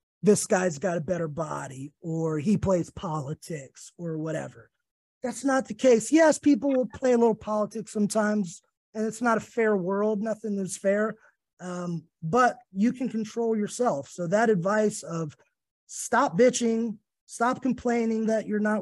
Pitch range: 165-215 Hz